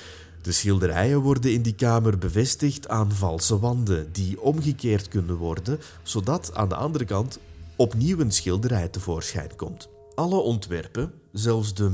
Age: 30-49